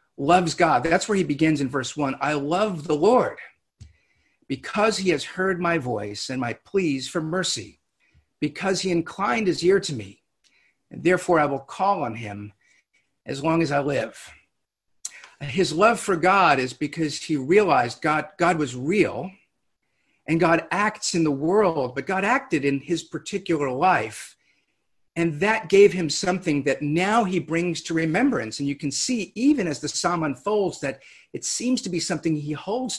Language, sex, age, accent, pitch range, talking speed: English, male, 50-69, American, 145-190 Hz, 175 wpm